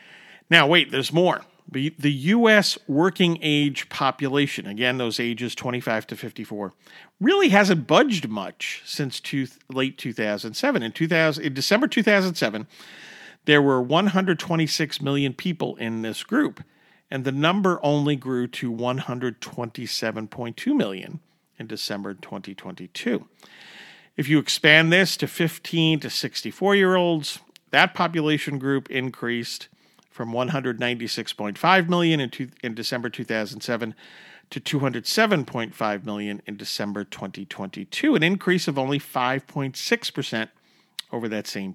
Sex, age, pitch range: male, 50-69, 125-175 Hz